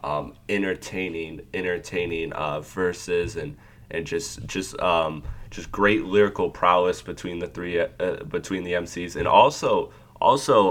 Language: English